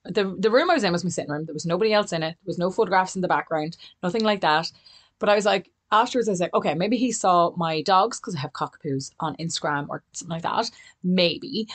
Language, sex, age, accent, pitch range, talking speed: English, female, 30-49, Irish, 150-200 Hz, 260 wpm